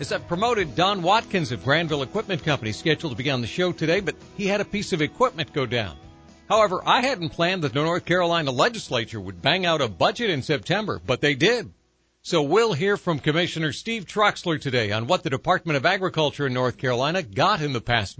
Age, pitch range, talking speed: 60-79, 125-180 Hz, 215 wpm